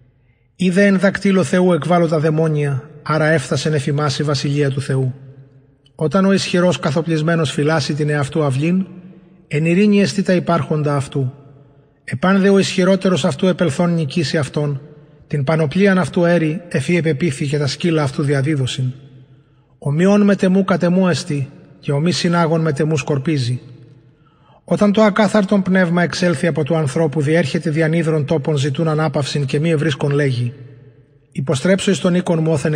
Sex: male